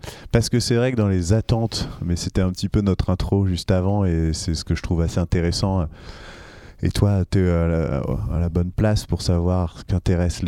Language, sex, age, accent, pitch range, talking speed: French, male, 30-49, French, 85-105 Hz, 220 wpm